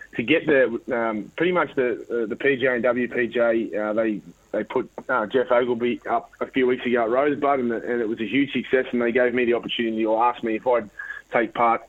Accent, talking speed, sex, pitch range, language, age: Australian, 235 wpm, male, 110-125 Hz, English, 20-39